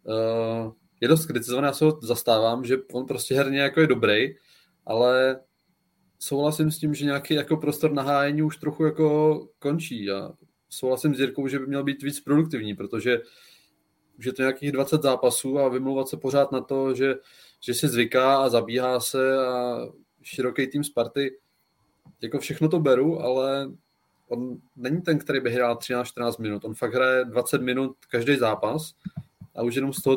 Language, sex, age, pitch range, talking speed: Czech, male, 20-39, 125-145 Hz, 175 wpm